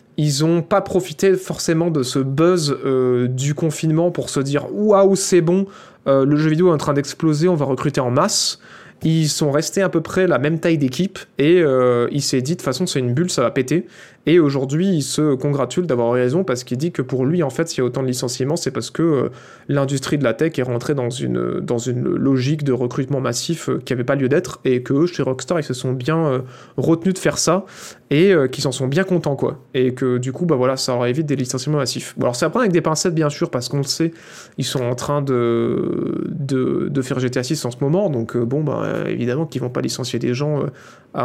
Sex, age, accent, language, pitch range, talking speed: male, 20-39, French, French, 130-165 Hz, 255 wpm